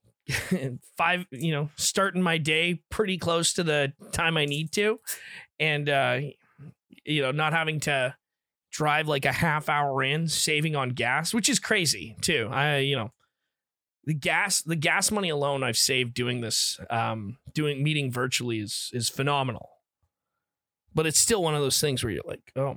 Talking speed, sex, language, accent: 170 wpm, male, English, American